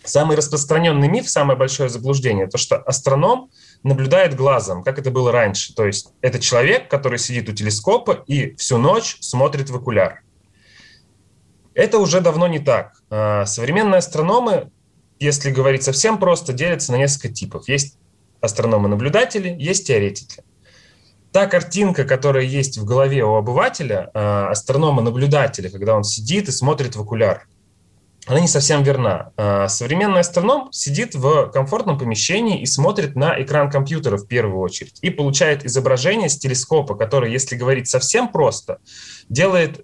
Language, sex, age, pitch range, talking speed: Russian, male, 20-39, 115-150 Hz, 140 wpm